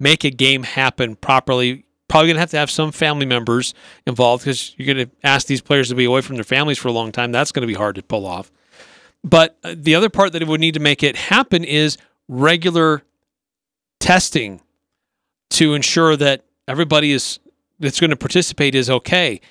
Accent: American